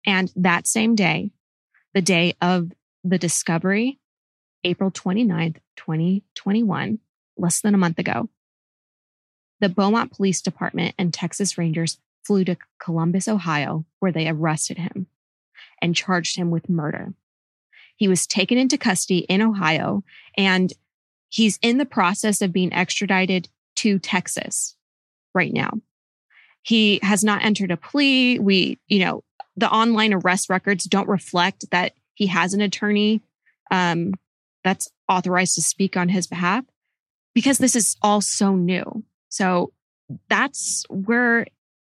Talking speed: 135 wpm